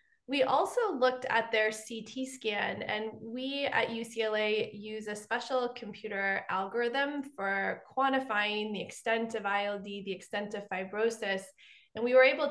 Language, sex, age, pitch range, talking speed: English, female, 20-39, 200-245 Hz, 145 wpm